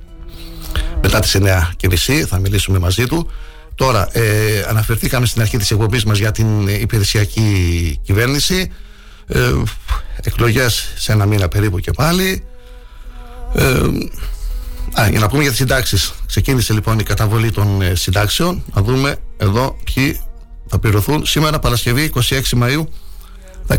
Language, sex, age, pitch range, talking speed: Greek, male, 60-79, 100-125 Hz, 135 wpm